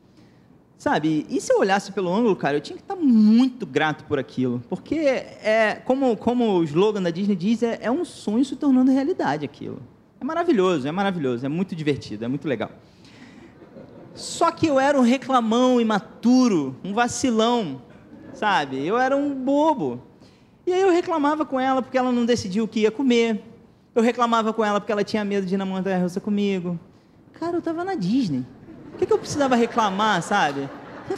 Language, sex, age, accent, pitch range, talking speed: Portuguese, male, 20-39, Brazilian, 185-255 Hz, 185 wpm